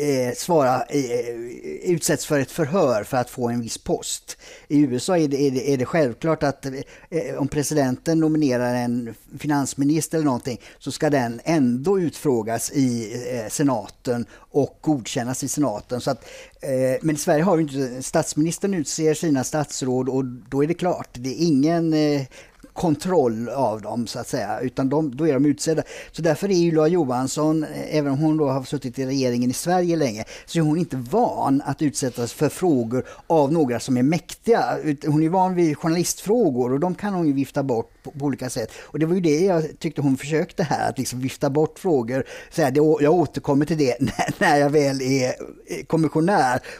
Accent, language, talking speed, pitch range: Norwegian, Swedish, 180 wpm, 130-160 Hz